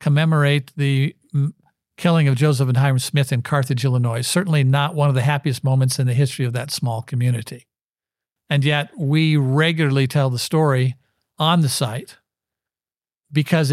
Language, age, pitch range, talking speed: English, 60-79, 135-170 Hz, 155 wpm